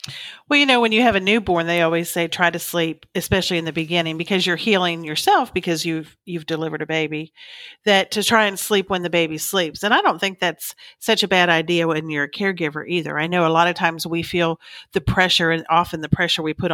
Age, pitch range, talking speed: 50-69, 170-205 Hz, 240 wpm